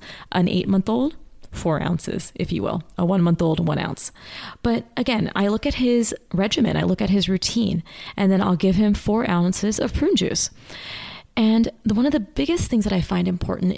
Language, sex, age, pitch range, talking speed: English, female, 30-49, 175-220 Hz, 205 wpm